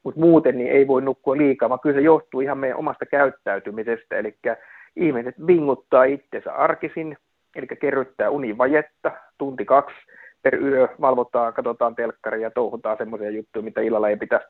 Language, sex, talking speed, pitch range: Finnish, male, 155 wpm, 110-135 Hz